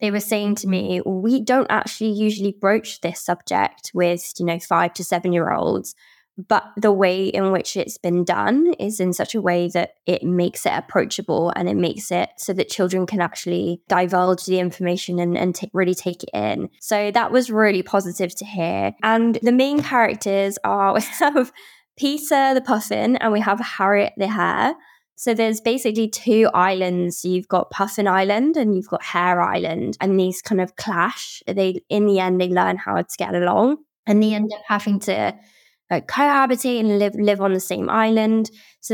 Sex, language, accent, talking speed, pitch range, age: female, English, British, 195 wpm, 180-220 Hz, 20-39